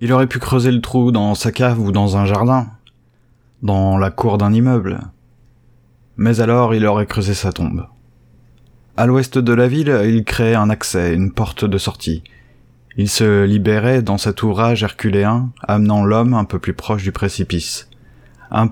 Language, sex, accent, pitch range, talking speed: French, male, French, 95-120 Hz, 175 wpm